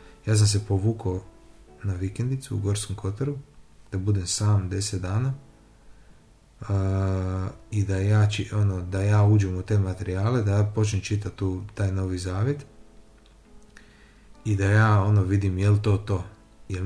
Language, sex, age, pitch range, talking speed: Croatian, male, 30-49, 100-115 Hz, 150 wpm